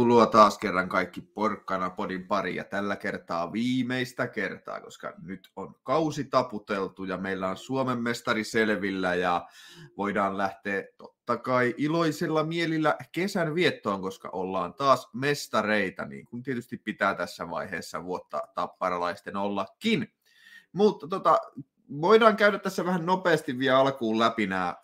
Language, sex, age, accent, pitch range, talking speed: Finnish, male, 30-49, native, 95-130 Hz, 135 wpm